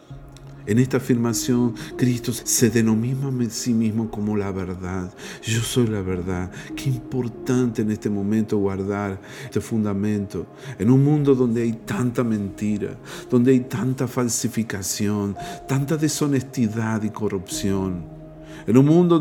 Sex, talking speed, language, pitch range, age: male, 130 wpm, Spanish, 105-130 Hz, 50-69